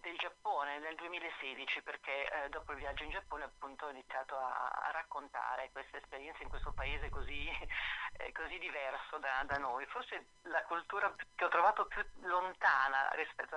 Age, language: 30-49, Italian